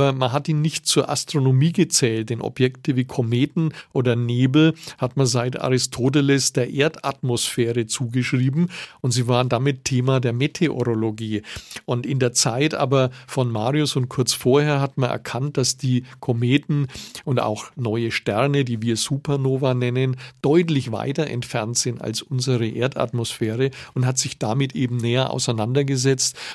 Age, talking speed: 50-69, 145 wpm